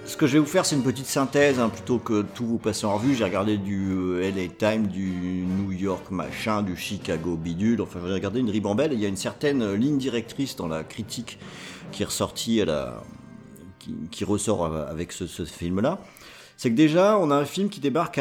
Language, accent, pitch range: French, French, 100-145 Hz